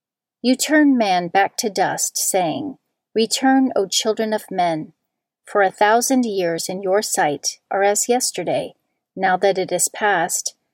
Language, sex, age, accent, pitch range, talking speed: English, female, 40-59, American, 190-240 Hz, 150 wpm